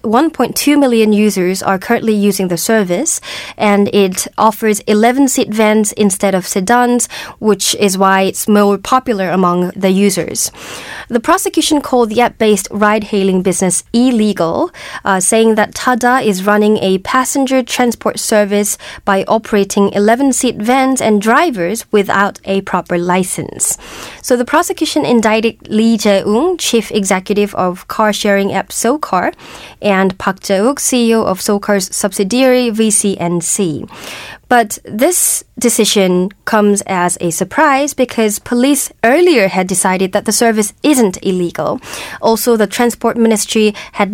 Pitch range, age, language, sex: 195-240 Hz, 20-39, Korean, female